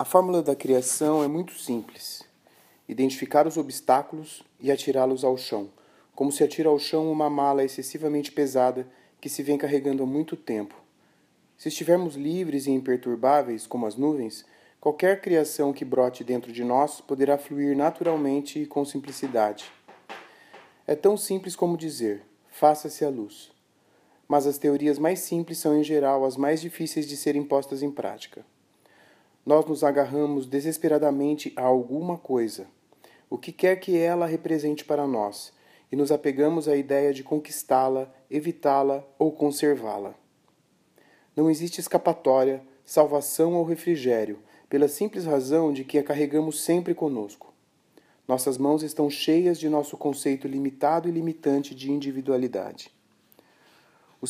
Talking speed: 140 wpm